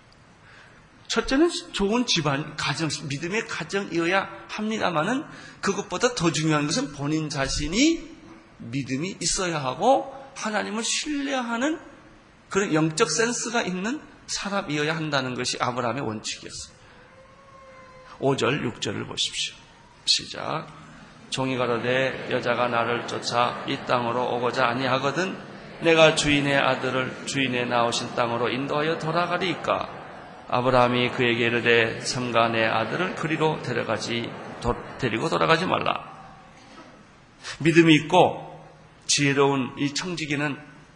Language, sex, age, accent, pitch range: Korean, male, 30-49, native, 130-180 Hz